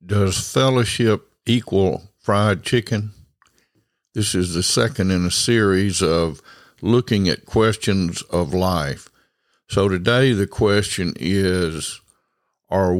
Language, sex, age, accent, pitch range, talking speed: English, male, 60-79, American, 90-115 Hz, 110 wpm